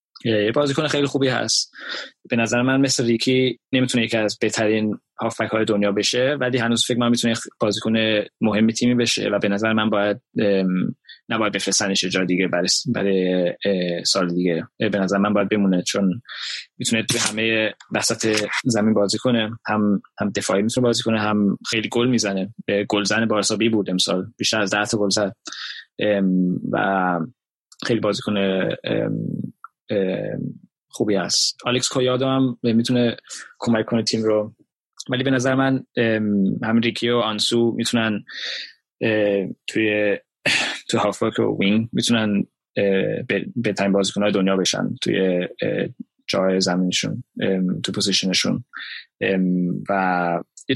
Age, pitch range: 20-39, 100-115 Hz